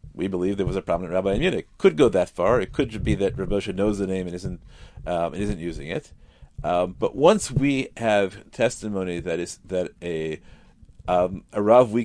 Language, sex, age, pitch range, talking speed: English, male, 40-59, 95-130 Hz, 210 wpm